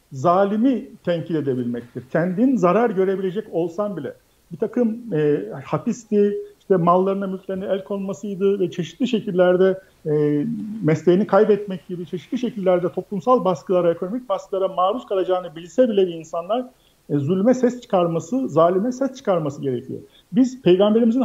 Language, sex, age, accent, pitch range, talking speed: Turkish, male, 50-69, native, 170-220 Hz, 125 wpm